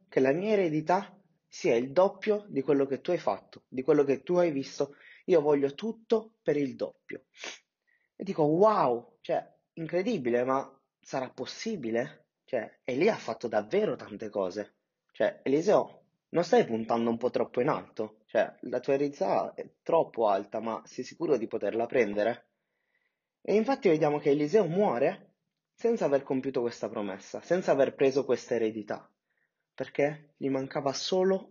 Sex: male